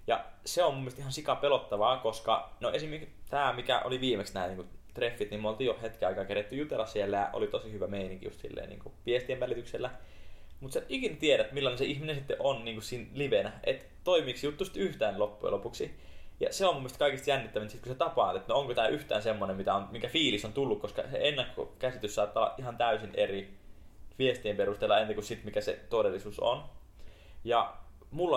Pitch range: 100-135 Hz